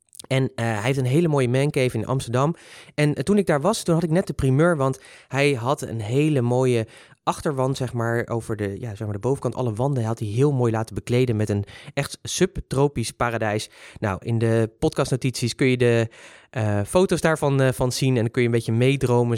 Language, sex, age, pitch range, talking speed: Dutch, male, 20-39, 115-150 Hz, 225 wpm